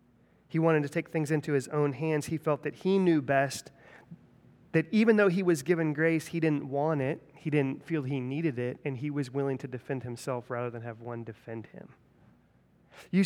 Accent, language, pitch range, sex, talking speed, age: American, English, 130-160 Hz, male, 210 wpm, 30-49